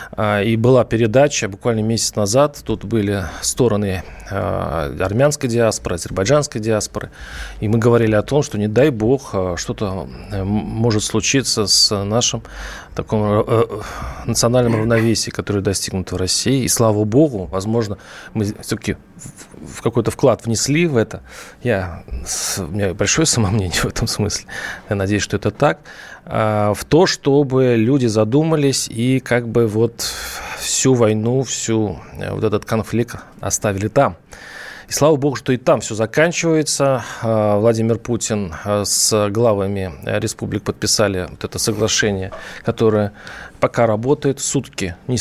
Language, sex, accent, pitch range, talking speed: Russian, male, native, 105-125 Hz, 130 wpm